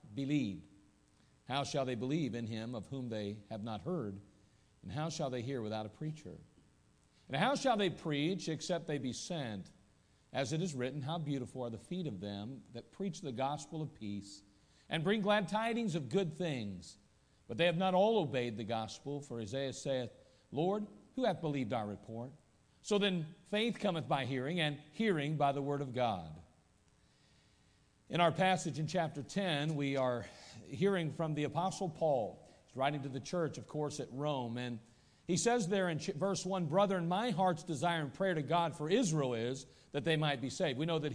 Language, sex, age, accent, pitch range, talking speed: English, male, 50-69, American, 130-180 Hz, 190 wpm